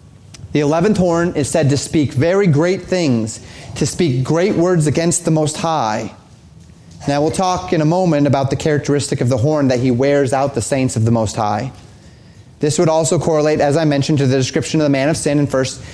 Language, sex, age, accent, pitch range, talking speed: English, male, 30-49, American, 130-160 Hz, 215 wpm